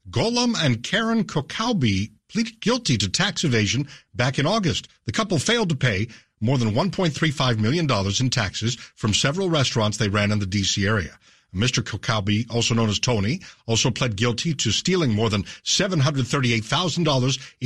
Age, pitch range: 60-79, 110-160 Hz